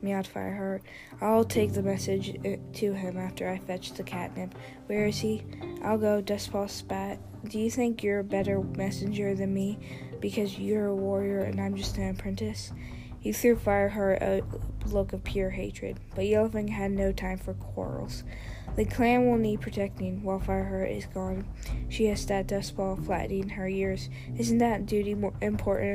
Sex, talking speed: female, 170 wpm